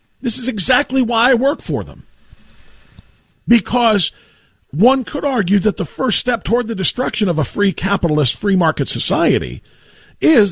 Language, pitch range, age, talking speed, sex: English, 145-215 Hz, 50-69, 155 wpm, male